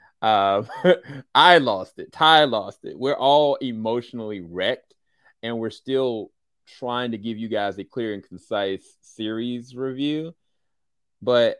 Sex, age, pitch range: male, 30-49, 100-130 Hz